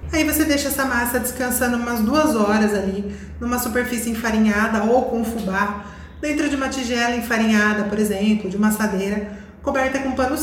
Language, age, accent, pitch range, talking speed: Portuguese, 20-39, Brazilian, 210-265 Hz, 165 wpm